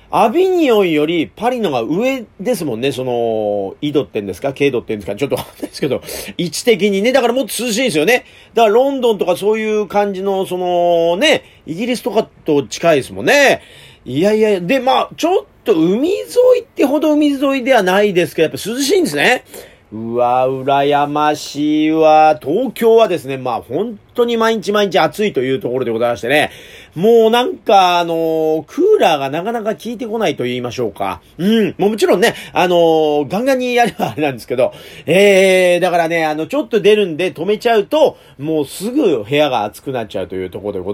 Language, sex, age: Japanese, male, 40-59